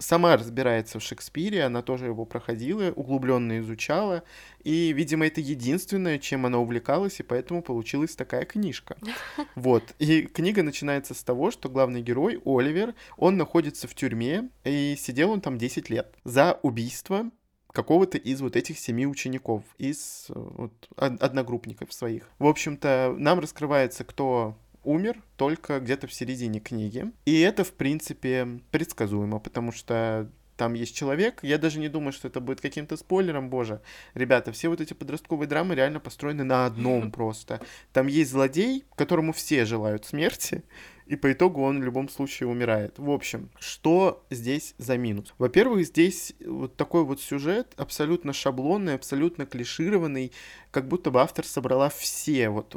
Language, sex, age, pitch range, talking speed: Russian, male, 20-39, 125-160 Hz, 150 wpm